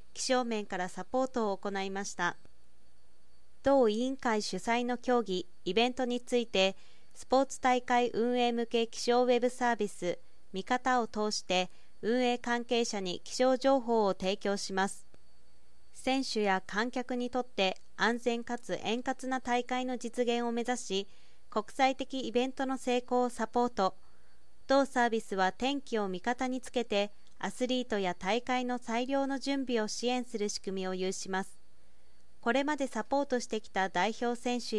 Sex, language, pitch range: female, Japanese, 195-250 Hz